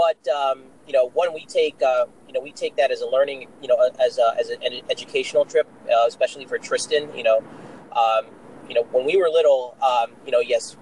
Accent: American